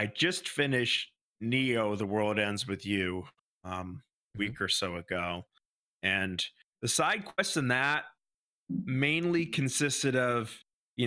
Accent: American